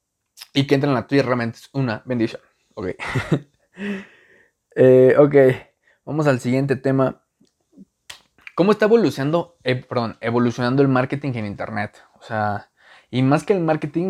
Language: Spanish